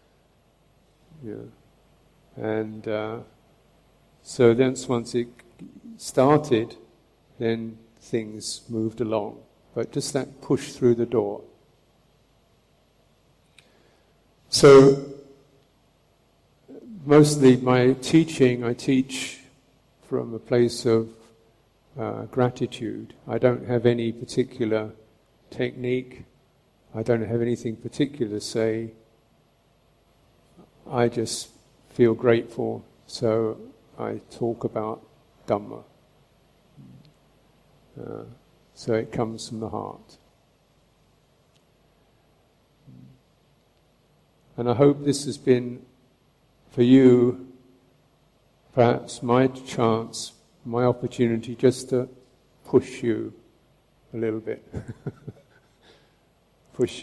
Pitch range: 115-130 Hz